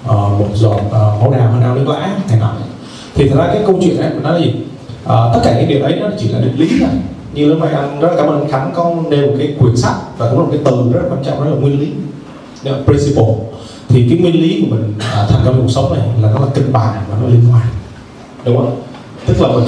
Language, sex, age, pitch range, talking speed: Vietnamese, male, 20-39, 120-155 Hz, 275 wpm